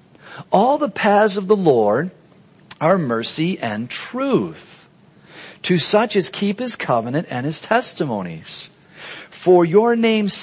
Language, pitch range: English, 140-185 Hz